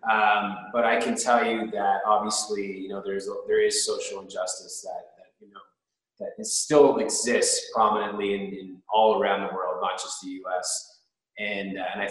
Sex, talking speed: male, 185 wpm